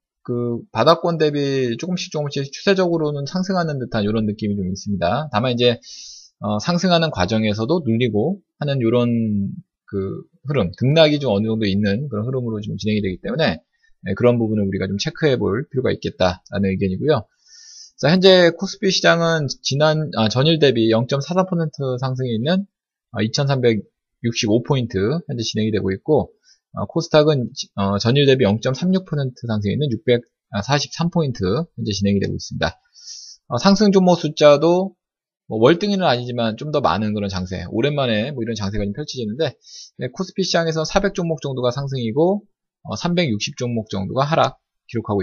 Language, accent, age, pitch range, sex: Korean, native, 20-39, 110-165 Hz, male